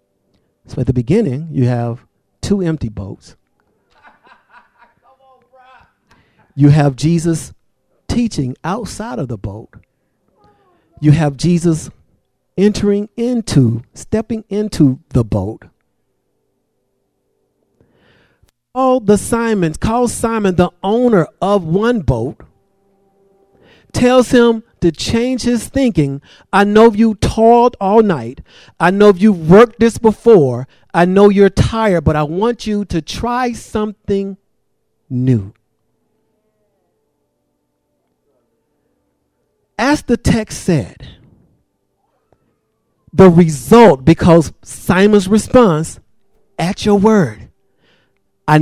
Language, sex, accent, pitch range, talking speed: English, male, American, 145-220 Hz, 95 wpm